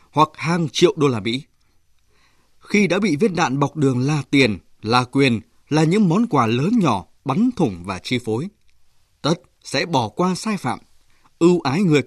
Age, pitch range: 20-39, 120-165 Hz